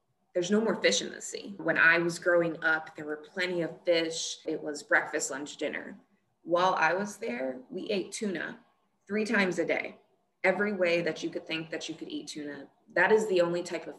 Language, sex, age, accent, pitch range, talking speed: English, female, 20-39, American, 155-180 Hz, 215 wpm